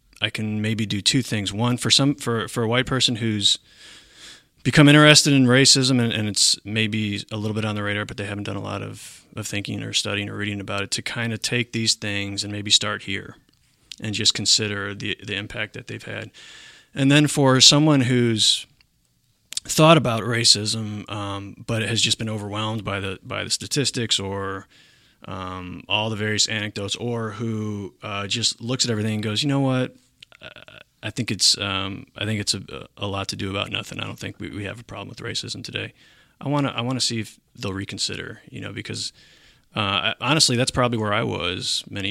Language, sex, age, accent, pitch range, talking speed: English, male, 30-49, American, 100-120 Hz, 210 wpm